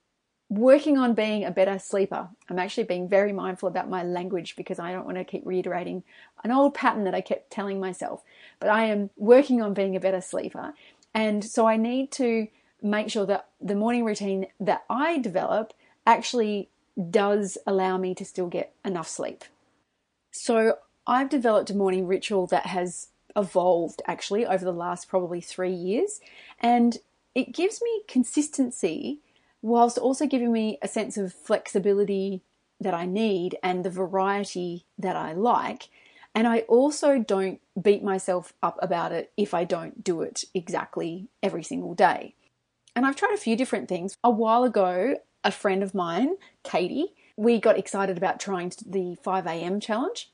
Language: English